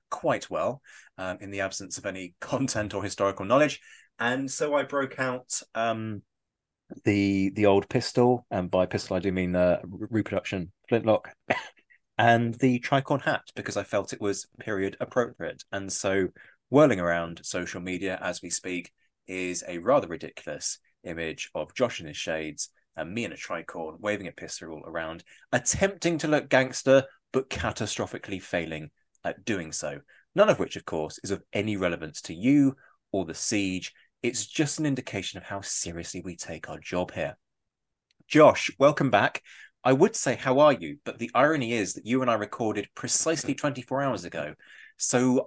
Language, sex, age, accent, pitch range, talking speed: English, male, 20-39, British, 90-125 Hz, 170 wpm